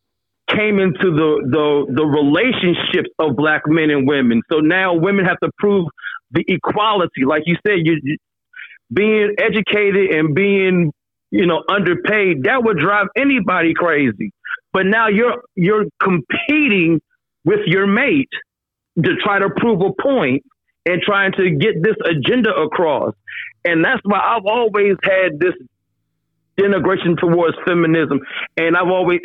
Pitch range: 160-210 Hz